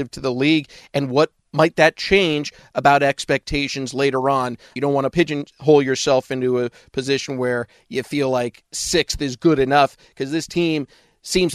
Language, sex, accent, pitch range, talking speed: English, male, American, 135-160 Hz, 170 wpm